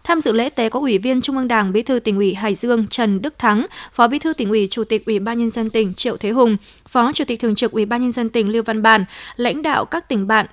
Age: 20-39